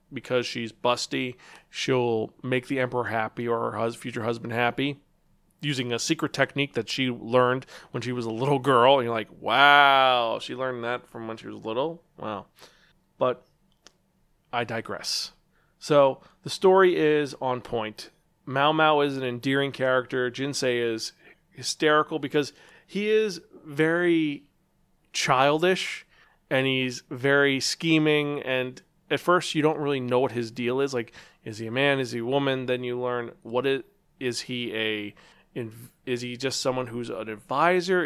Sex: male